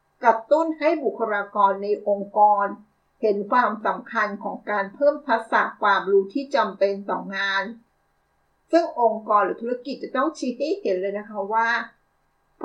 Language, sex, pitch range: Thai, female, 205-270 Hz